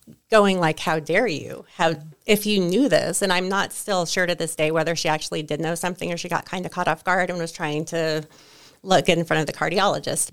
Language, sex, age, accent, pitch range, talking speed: English, female, 30-49, American, 160-185 Hz, 245 wpm